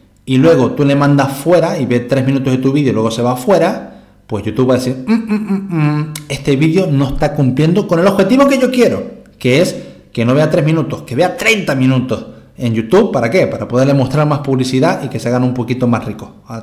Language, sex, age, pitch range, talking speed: Spanish, male, 30-49, 115-160 Hz, 240 wpm